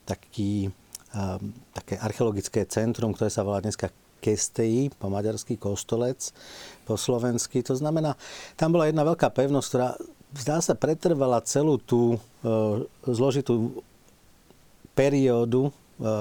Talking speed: 115 wpm